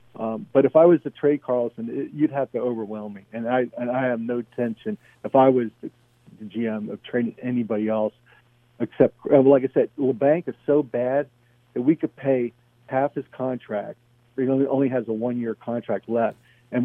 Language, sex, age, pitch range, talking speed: English, male, 50-69, 115-130 Hz, 190 wpm